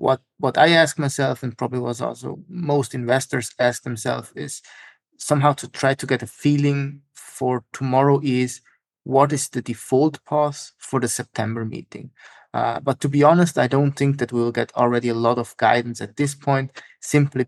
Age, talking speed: 30-49, 180 wpm